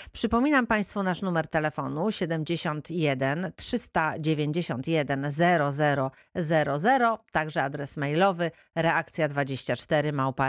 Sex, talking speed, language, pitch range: female, 75 wpm, Polish, 145-180 Hz